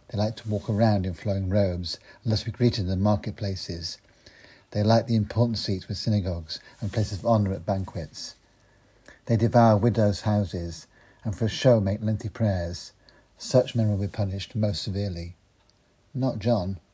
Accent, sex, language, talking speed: British, male, English, 170 wpm